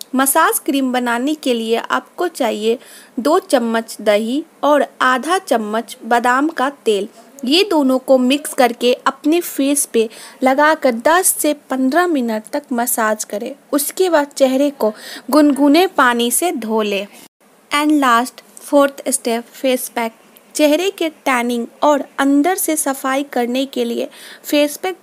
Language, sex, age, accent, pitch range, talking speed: Hindi, female, 20-39, native, 235-300 Hz, 140 wpm